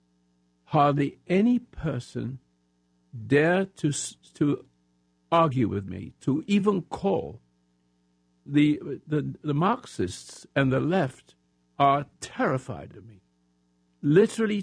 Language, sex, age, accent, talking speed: English, male, 60-79, American, 100 wpm